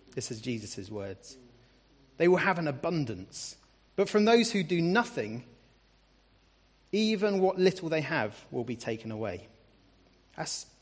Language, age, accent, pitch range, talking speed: English, 30-49, British, 120-170 Hz, 140 wpm